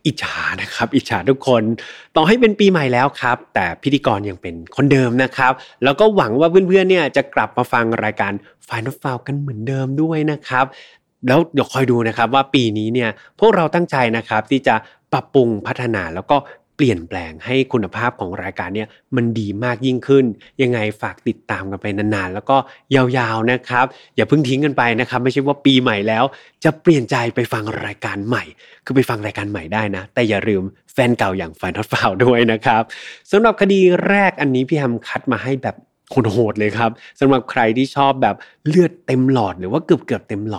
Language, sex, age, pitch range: Thai, male, 20-39, 110-135 Hz